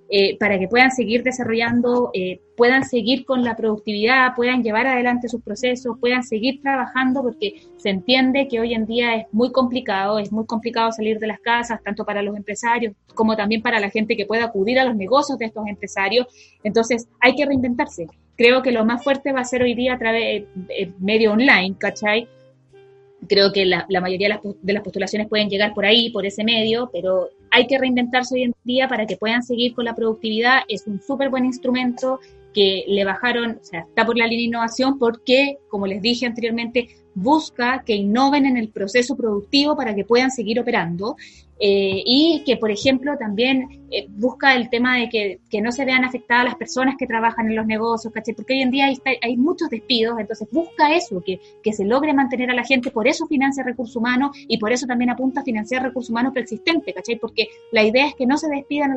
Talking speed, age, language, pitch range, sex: 210 wpm, 20-39, Spanish, 210-255 Hz, female